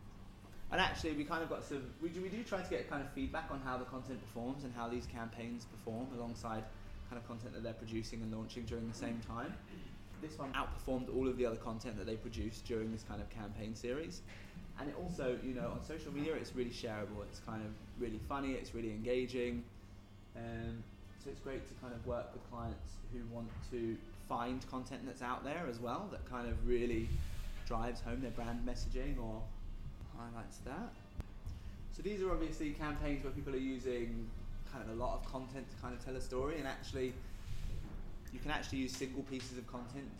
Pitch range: 105-130 Hz